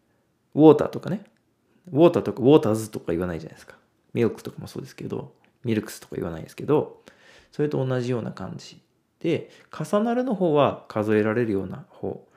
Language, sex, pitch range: Japanese, male, 105-145 Hz